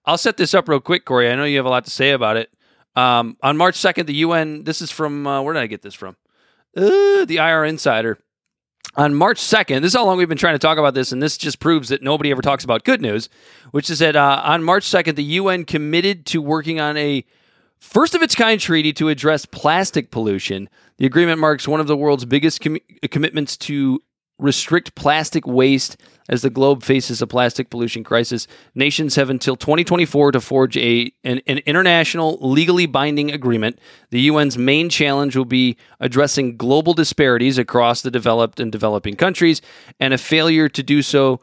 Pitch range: 125-155 Hz